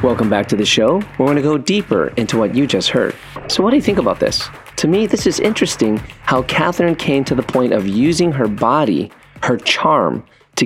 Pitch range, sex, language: 105-140 Hz, male, English